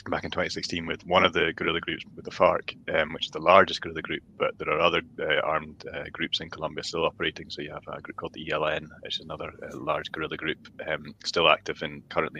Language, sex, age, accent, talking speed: English, male, 30-49, British, 245 wpm